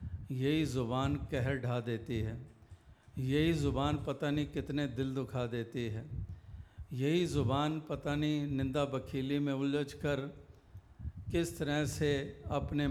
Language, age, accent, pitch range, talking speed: Hindi, 50-69, native, 115-145 Hz, 125 wpm